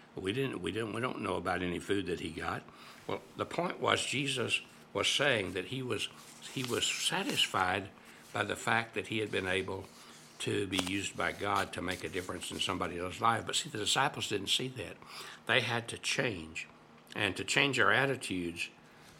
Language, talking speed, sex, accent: English, 195 wpm, male, American